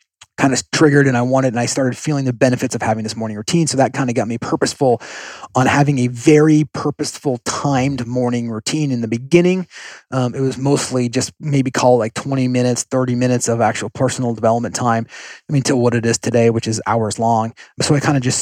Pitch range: 115-140 Hz